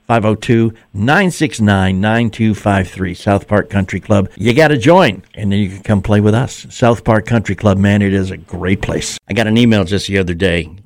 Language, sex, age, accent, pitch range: English, male, 60-79, American, 95-120 Hz